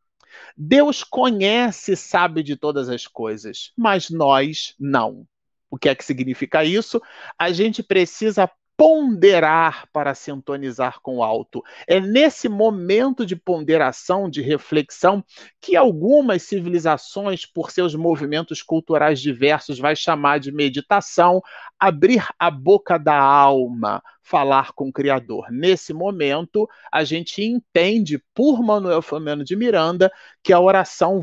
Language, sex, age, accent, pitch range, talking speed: Portuguese, male, 40-59, Brazilian, 150-215 Hz, 130 wpm